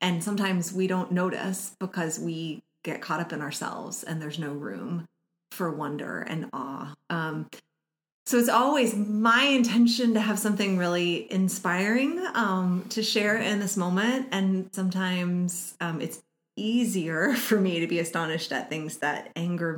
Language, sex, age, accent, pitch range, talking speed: English, female, 30-49, American, 160-215 Hz, 155 wpm